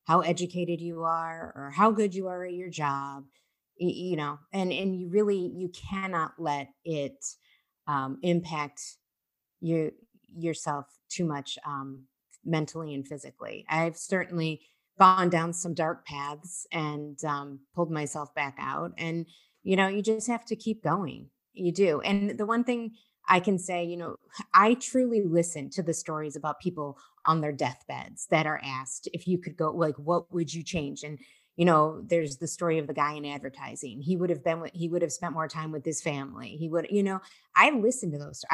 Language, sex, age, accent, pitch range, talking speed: English, female, 30-49, American, 155-190 Hz, 190 wpm